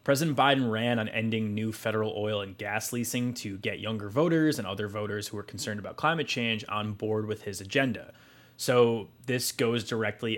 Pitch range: 105-130 Hz